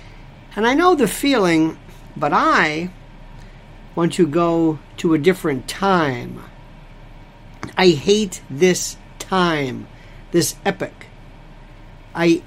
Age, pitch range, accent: 50-69, 135-195 Hz, American